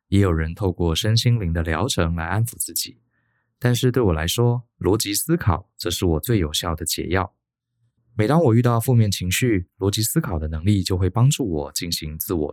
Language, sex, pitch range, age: Chinese, male, 85-120 Hz, 20-39